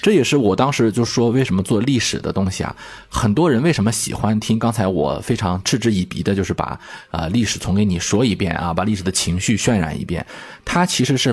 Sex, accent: male, native